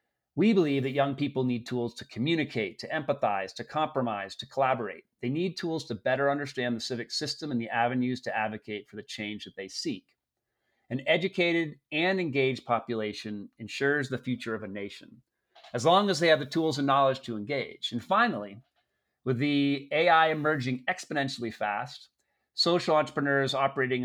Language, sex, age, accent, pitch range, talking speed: English, male, 40-59, American, 115-155 Hz, 170 wpm